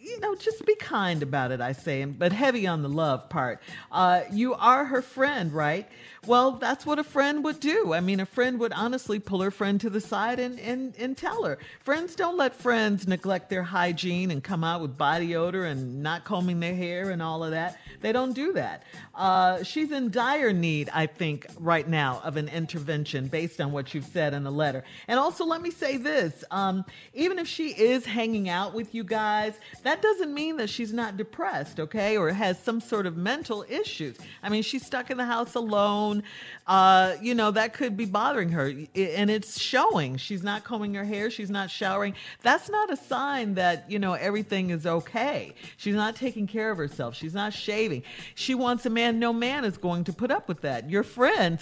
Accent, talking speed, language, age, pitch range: American, 215 wpm, English, 50-69, 165-240 Hz